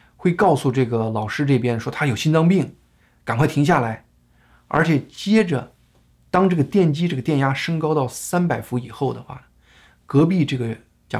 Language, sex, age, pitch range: Chinese, male, 20-39, 115-150 Hz